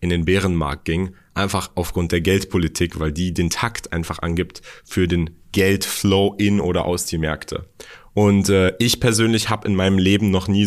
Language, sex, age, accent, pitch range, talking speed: German, male, 30-49, German, 90-105 Hz, 180 wpm